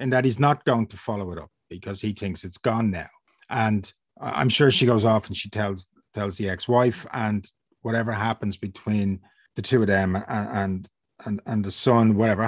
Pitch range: 105-125 Hz